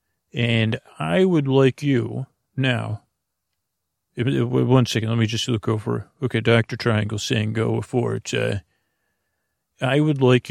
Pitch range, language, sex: 110-130 Hz, English, male